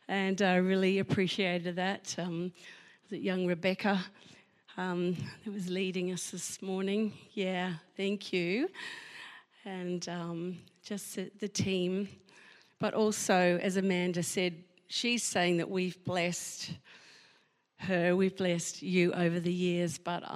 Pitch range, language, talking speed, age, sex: 180-205 Hz, English, 125 wpm, 50-69, female